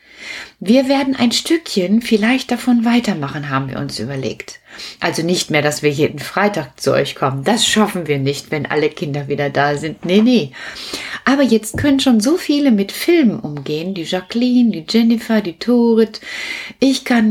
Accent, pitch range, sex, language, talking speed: German, 160-250 Hz, female, German, 175 wpm